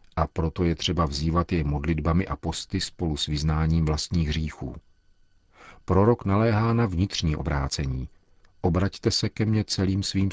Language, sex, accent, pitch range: Czech, male, native, 80-95 Hz